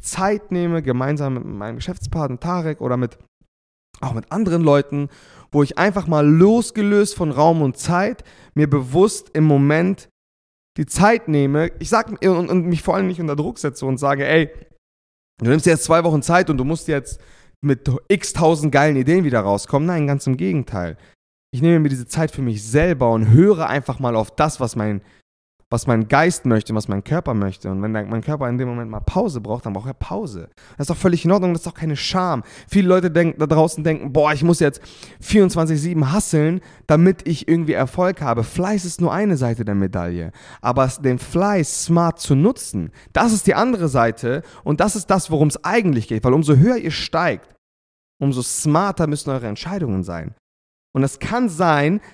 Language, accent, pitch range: German, German, 120-170 Hz